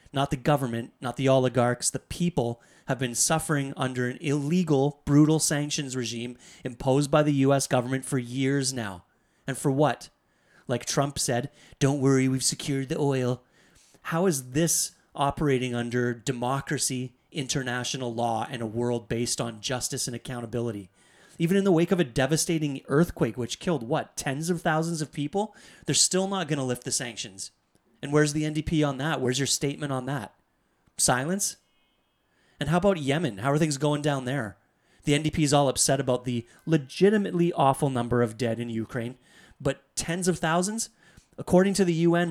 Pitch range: 125-155 Hz